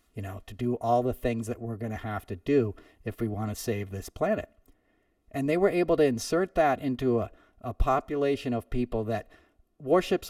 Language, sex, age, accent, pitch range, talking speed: English, male, 40-59, American, 115-140 Hz, 210 wpm